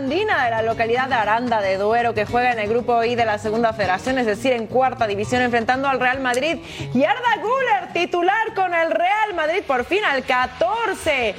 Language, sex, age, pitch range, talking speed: Spanish, female, 30-49, 250-340 Hz, 200 wpm